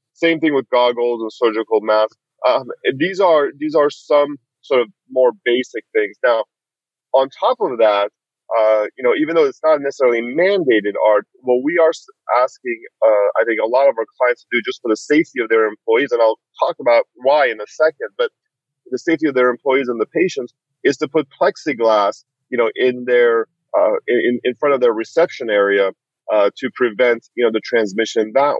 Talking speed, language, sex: 200 wpm, English, male